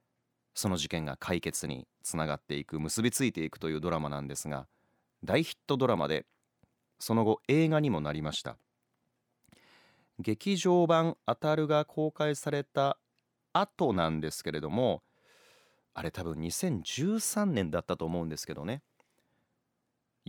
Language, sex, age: Japanese, male, 30-49